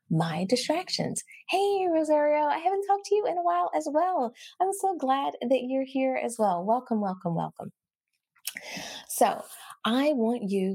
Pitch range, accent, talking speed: 185-295 Hz, American, 160 wpm